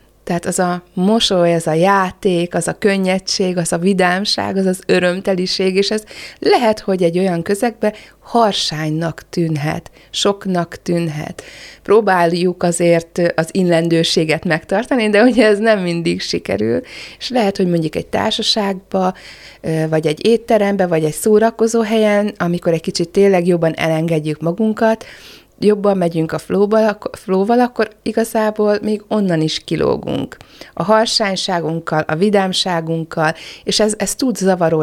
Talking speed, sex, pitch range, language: 135 wpm, female, 170-205 Hz, Hungarian